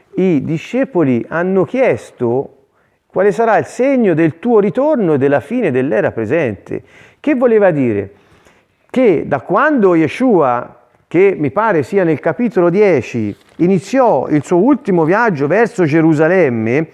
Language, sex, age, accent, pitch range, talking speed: Italian, male, 40-59, native, 140-220 Hz, 130 wpm